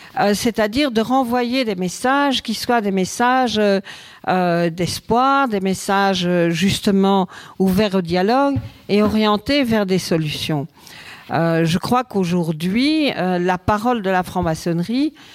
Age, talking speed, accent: 50-69, 125 wpm, French